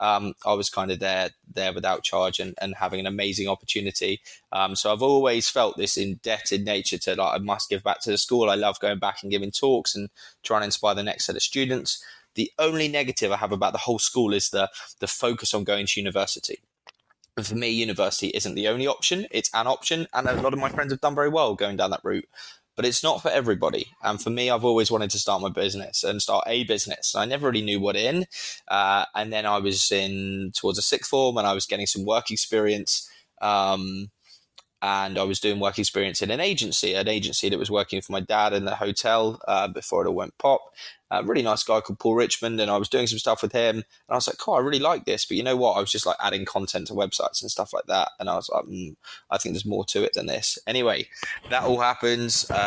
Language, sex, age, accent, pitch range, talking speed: English, male, 20-39, British, 100-120 Hz, 245 wpm